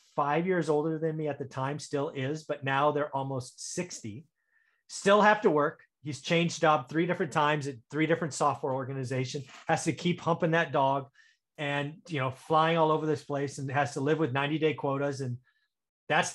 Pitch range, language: 135-180 Hz, English